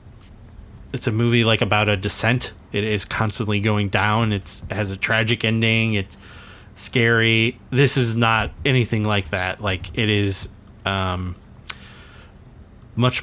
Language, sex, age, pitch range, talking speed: English, male, 20-39, 100-115 Hz, 140 wpm